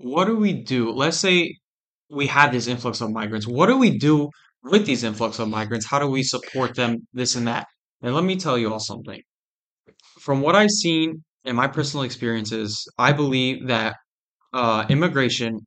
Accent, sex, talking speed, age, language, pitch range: American, male, 190 wpm, 20-39, English, 115-145 Hz